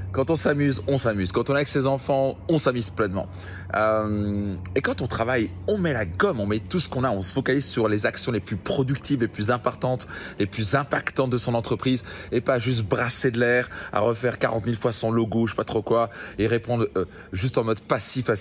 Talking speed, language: 240 wpm, French